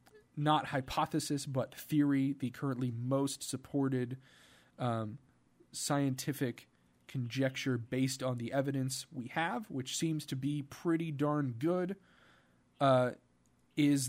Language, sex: English, male